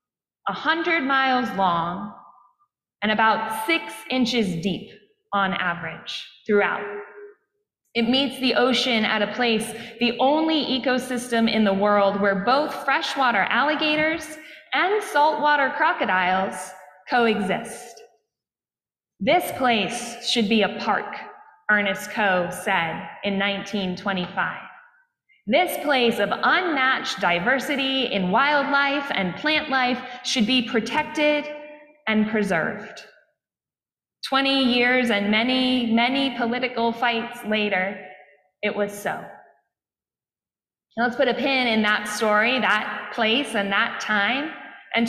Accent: American